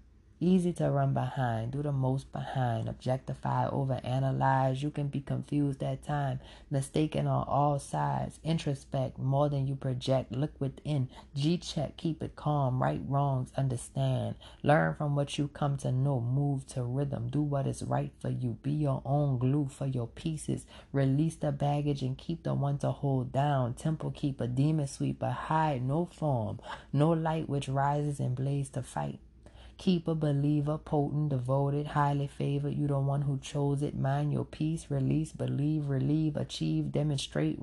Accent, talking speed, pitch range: American, 165 wpm, 125-145 Hz